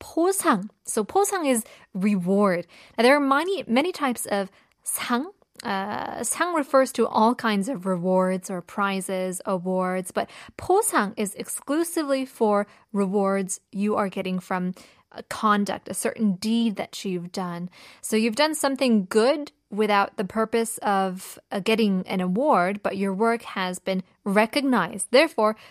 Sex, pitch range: female, 195-250 Hz